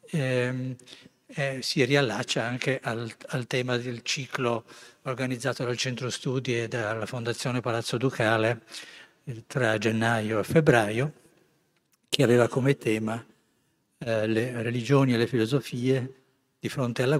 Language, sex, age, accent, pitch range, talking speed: Italian, male, 60-79, native, 115-135 Hz, 130 wpm